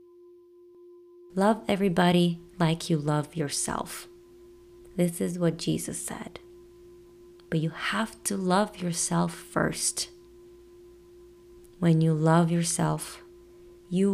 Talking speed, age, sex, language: 100 wpm, 30-49, female, English